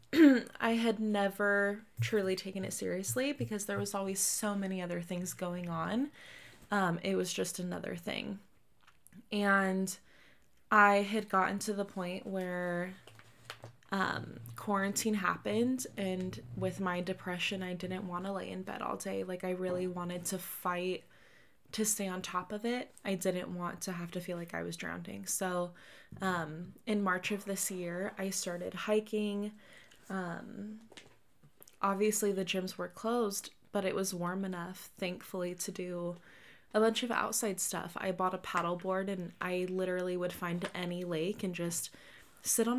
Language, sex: English, female